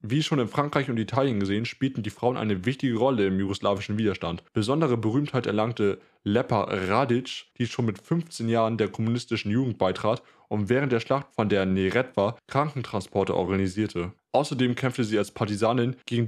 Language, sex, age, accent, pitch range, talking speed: German, male, 20-39, German, 110-135 Hz, 165 wpm